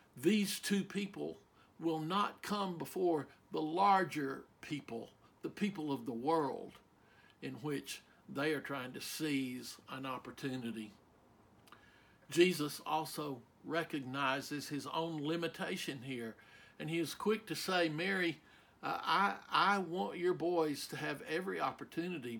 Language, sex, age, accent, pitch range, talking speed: English, male, 60-79, American, 135-170 Hz, 125 wpm